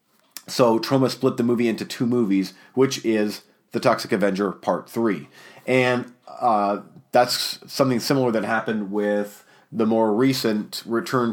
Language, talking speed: English, 145 wpm